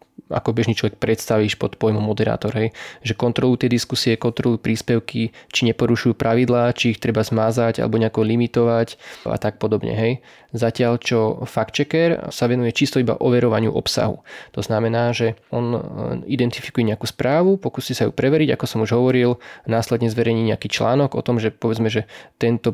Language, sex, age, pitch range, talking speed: Slovak, male, 20-39, 115-130 Hz, 165 wpm